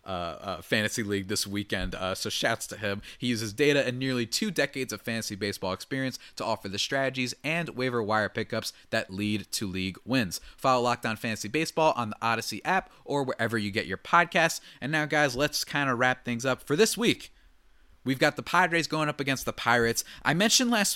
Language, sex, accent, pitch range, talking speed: English, male, American, 110-155 Hz, 210 wpm